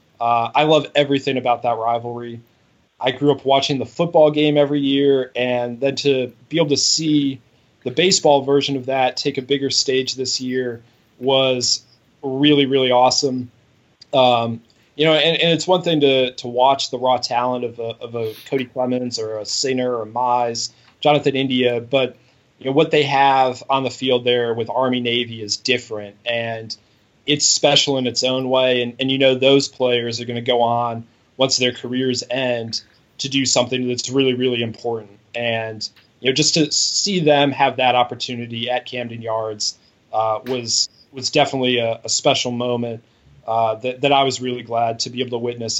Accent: American